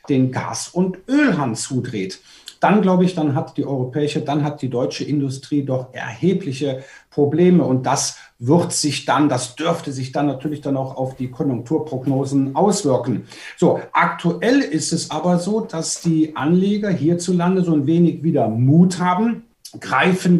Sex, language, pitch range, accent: male, German, 145-175 Hz, German